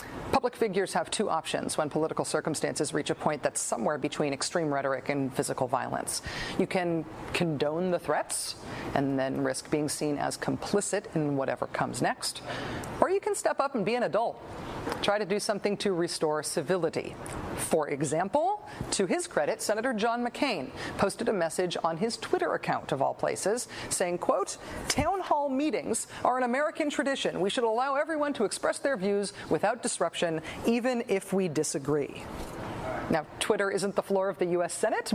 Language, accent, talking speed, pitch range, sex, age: English, American, 170 wpm, 165-255 Hz, female, 40-59